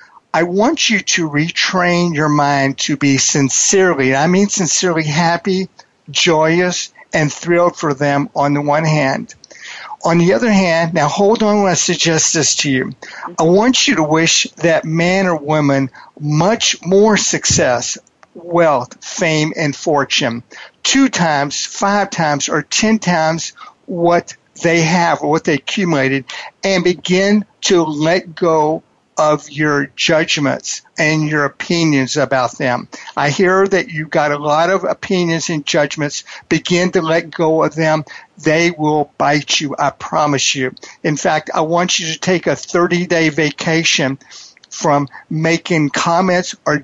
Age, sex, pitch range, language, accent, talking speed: 50-69, male, 145-180 Hz, English, American, 155 wpm